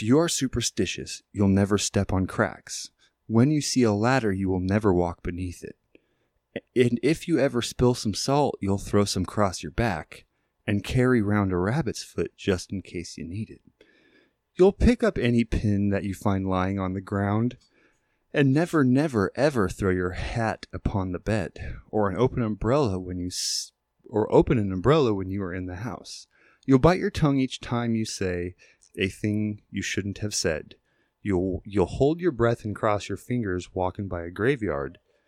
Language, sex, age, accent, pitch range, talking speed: English, male, 30-49, American, 95-130 Hz, 185 wpm